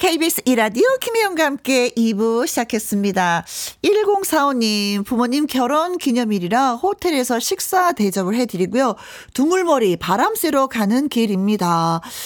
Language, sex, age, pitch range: Korean, female, 40-59, 190-285 Hz